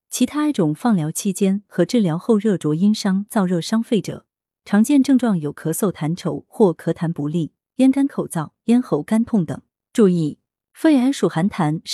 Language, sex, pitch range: Chinese, female, 165-230 Hz